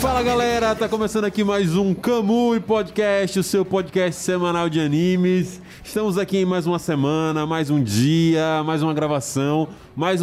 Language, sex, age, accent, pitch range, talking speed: Portuguese, male, 20-39, Brazilian, 130-180 Hz, 165 wpm